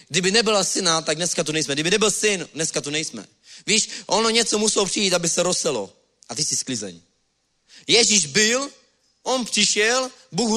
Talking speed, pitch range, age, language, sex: 170 wpm, 155-205 Hz, 30-49, Czech, male